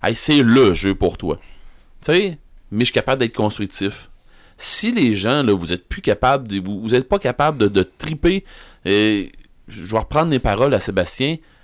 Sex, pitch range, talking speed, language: male, 105-140 Hz, 200 wpm, French